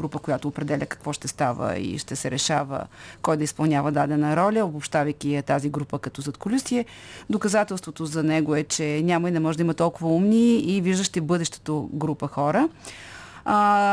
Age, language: 30-49, Bulgarian